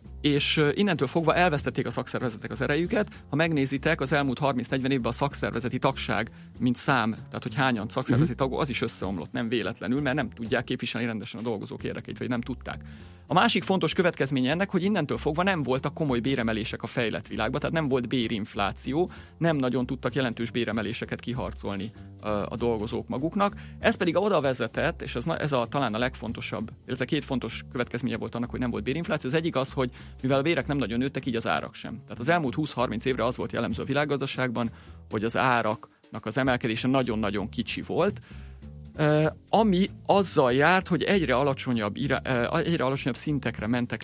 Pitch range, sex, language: 110-145 Hz, male, Hungarian